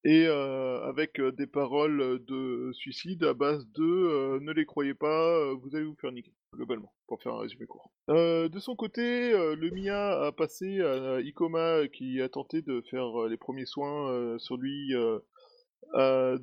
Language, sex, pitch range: French, male, 130-180 Hz